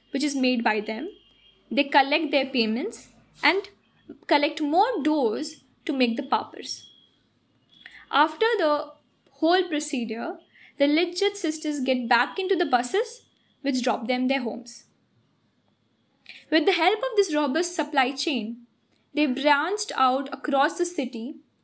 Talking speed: 135 wpm